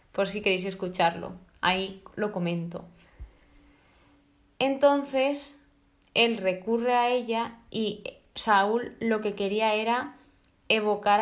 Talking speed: 100 wpm